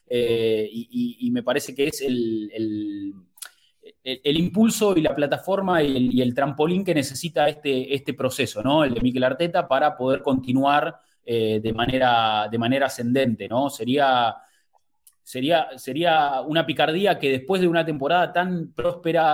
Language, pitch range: English, 125-165 Hz